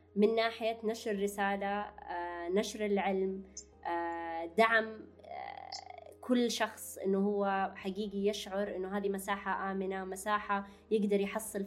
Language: Arabic